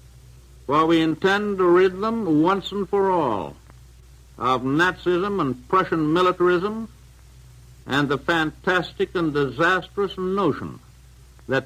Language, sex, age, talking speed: English, male, 60-79, 115 wpm